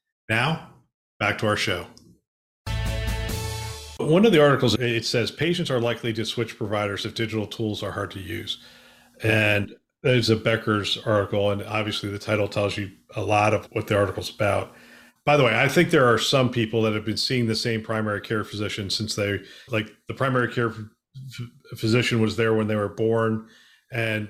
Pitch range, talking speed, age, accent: 110-125 Hz, 185 wpm, 40-59, American